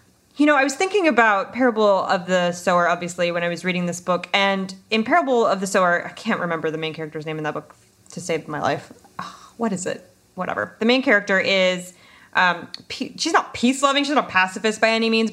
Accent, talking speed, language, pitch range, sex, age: American, 215 wpm, English, 175-220 Hz, female, 20-39